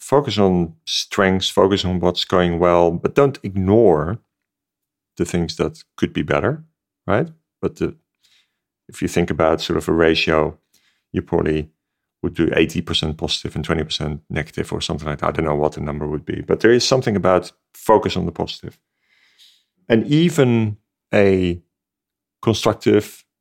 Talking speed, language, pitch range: 155 wpm, English, 85-105 Hz